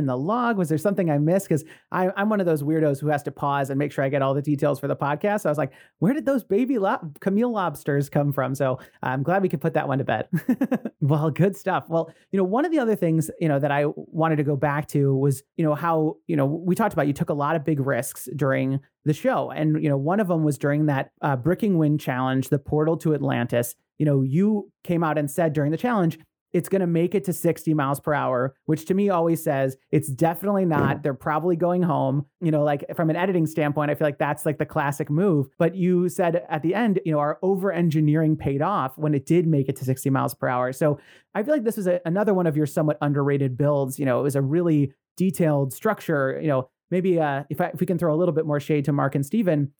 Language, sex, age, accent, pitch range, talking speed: English, male, 30-49, American, 145-175 Hz, 260 wpm